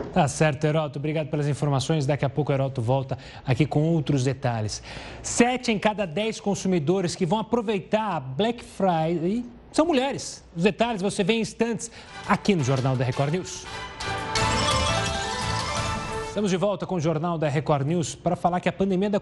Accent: Brazilian